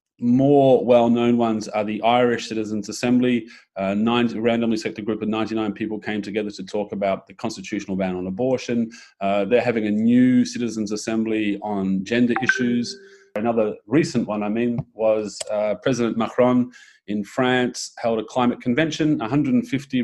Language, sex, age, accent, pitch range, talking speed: English, male, 30-49, Australian, 105-130 Hz, 160 wpm